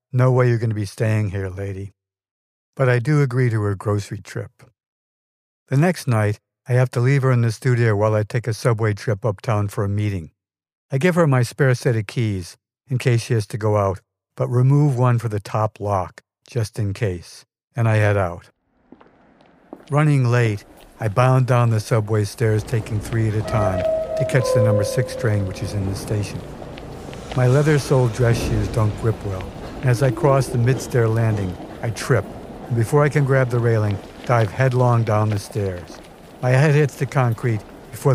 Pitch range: 105-130 Hz